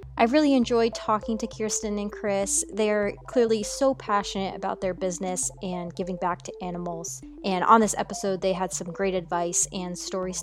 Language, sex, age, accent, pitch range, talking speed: English, female, 20-39, American, 190-225 Hz, 180 wpm